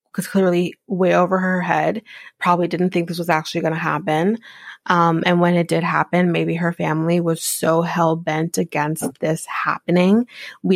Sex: female